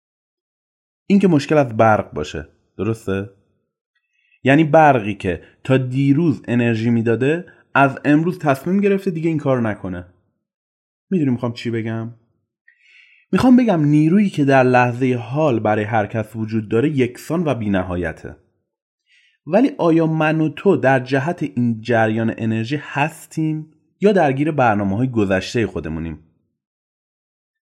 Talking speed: 125 wpm